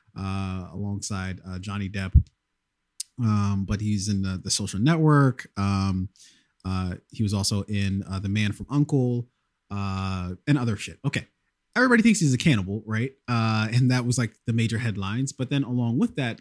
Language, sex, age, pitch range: English, male, 30-49, 105-155 Hz